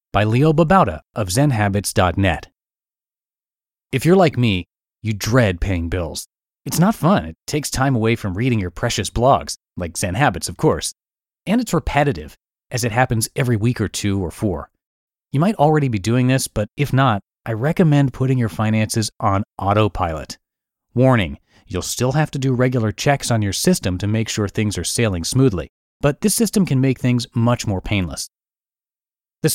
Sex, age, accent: male, 30-49, American